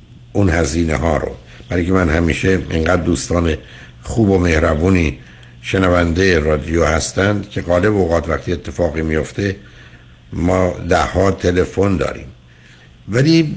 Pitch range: 85-115 Hz